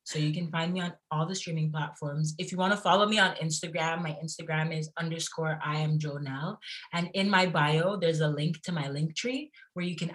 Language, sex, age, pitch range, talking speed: English, female, 20-39, 160-205 Hz, 230 wpm